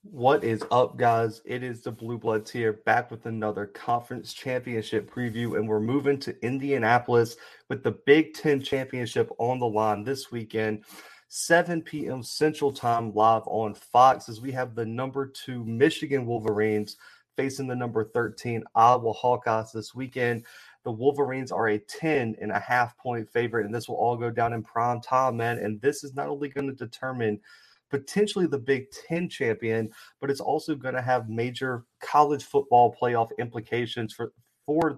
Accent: American